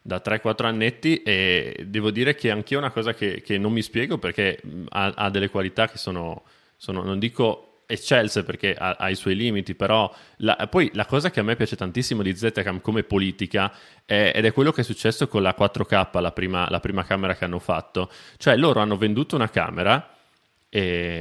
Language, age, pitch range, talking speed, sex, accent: Italian, 20-39, 100-135 Hz, 200 wpm, male, native